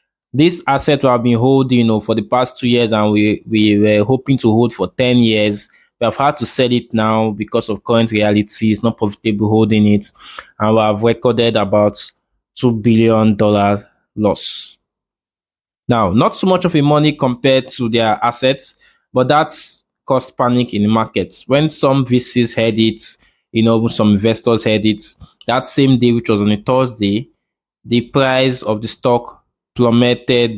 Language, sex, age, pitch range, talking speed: English, male, 20-39, 105-125 Hz, 180 wpm